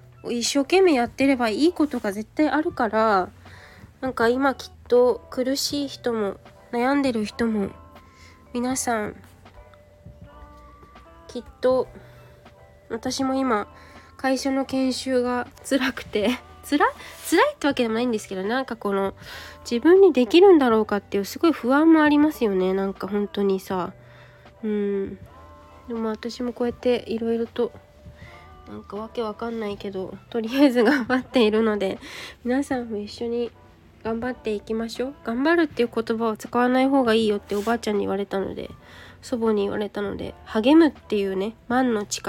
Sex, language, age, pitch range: female, Japanese, 20-39, 200-260 Hz